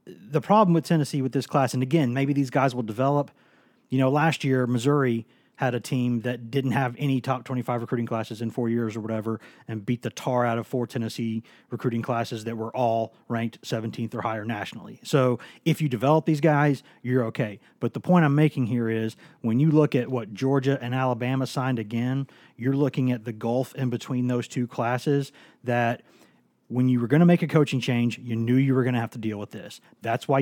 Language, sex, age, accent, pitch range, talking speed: English, male, 30-49, American, 115-140 Hz, 220 wpm